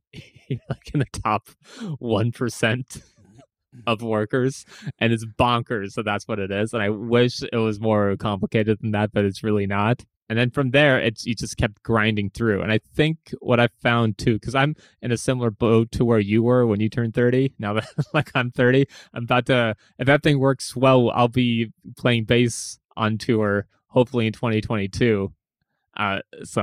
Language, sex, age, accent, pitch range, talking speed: English, male, 20-39, American, 105-130 Hz, 185 wpm